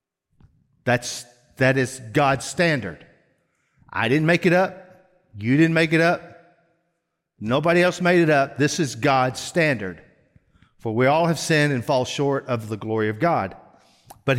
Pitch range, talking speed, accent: 120-165 Hz, 165 wpm, American